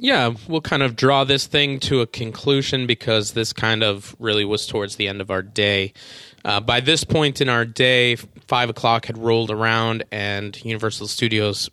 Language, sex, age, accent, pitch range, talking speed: English, male, 20-39, American, 105-125 Hz, 190 wpm